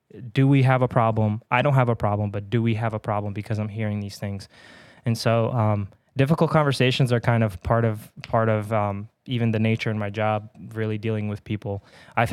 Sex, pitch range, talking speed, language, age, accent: male, 110-125 Hz, 220 wpm, English, 20-39, American